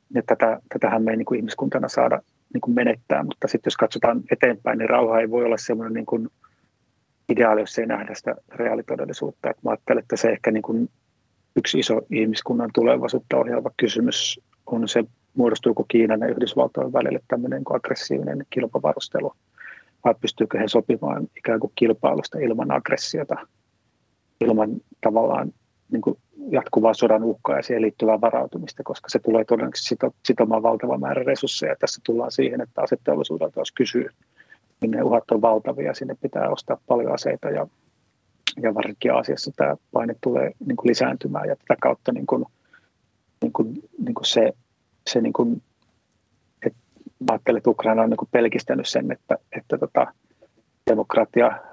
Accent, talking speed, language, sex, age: native, 150 wpm, Finnish, male, 30-49